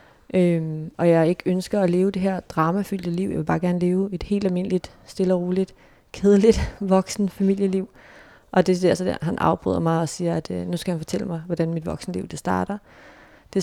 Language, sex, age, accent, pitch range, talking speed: Danish, female, 30-49, native, 155-180 Hz, 205 wpm